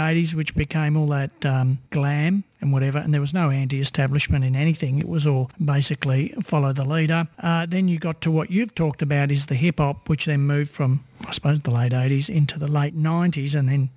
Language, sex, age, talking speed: English, male, 50-69, 215 wpm